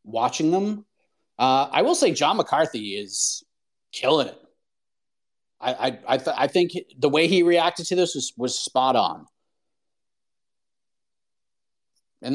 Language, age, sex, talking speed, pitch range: English, 30-49, male, 130 wpm, 120-165 Hz